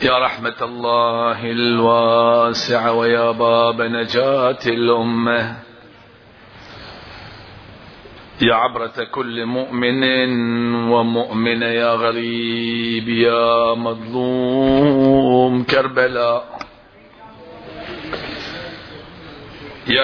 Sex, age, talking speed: male, 50-69, 55 wpm